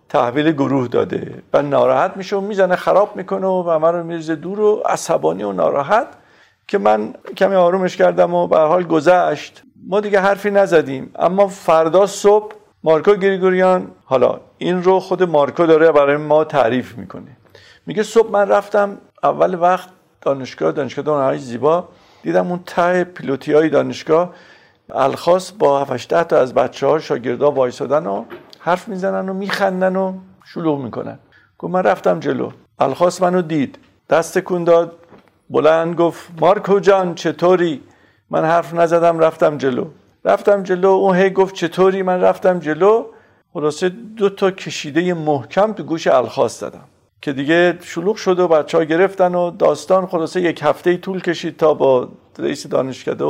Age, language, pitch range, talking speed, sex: 50-69, Persian, 160-190 Hz, 150 wpm, male